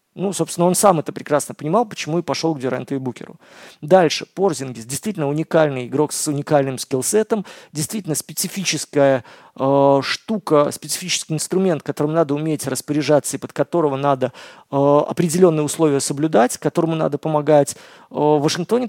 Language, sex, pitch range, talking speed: Russian, male, 140-175 Hz, 135 wpm